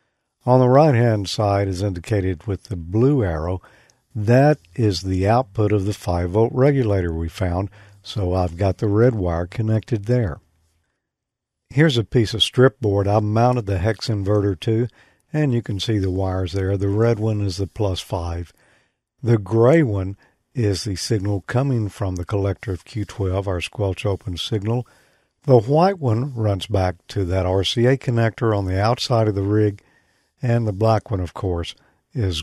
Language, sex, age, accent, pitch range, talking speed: English, male, 50-69, American, 95-120 Hz, 170 wpm